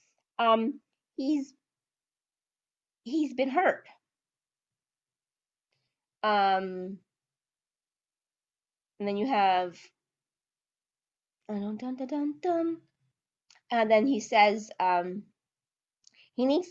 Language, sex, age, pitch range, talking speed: English, female, 30-49, 195-260 Hz, 60 wpm